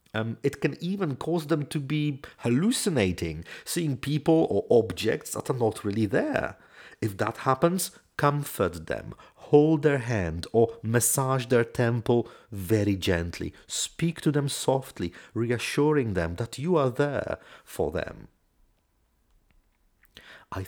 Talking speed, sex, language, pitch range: 130 wpm, male, English, 90-145 Hz